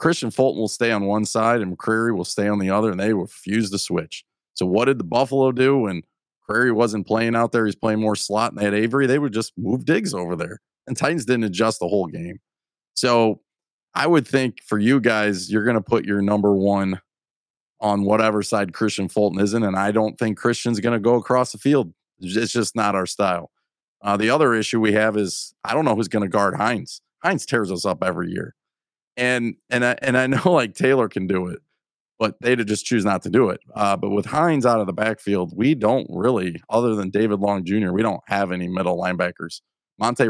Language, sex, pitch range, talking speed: English, male, 100-120 Hz, 230 wpm